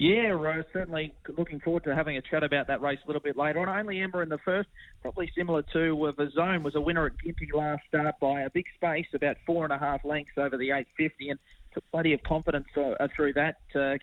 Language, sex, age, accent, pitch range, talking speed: English, male, 30-49, Australian, 135-160 Hz, 245 wpm